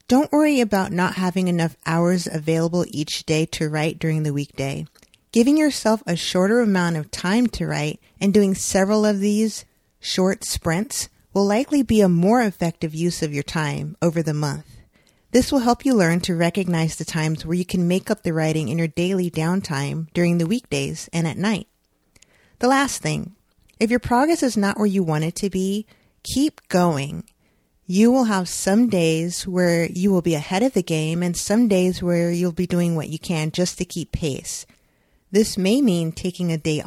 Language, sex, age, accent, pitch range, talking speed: English, female, 30-49, American, 160-210 Hz, 195 wpm